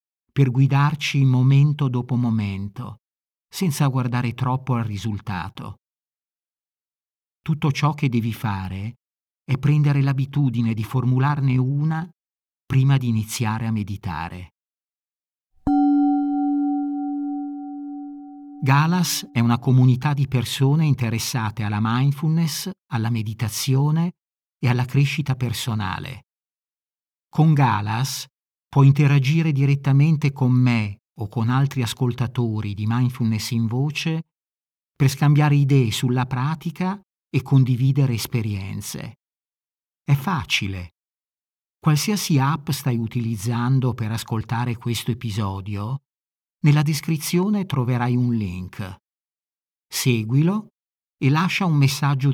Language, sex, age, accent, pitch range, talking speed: Italian, male, 50-69, native, 115-150 Hz, 95 wpm